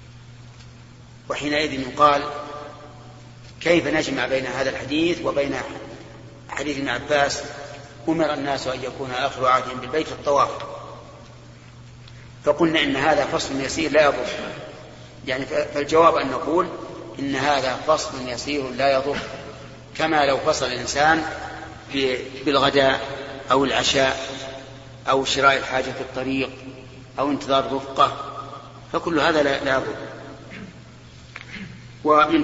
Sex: male